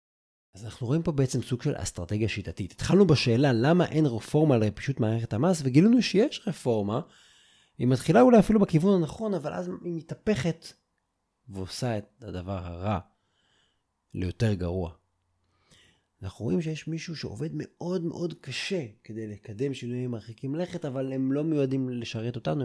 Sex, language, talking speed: male, Hebrew, 145 wpm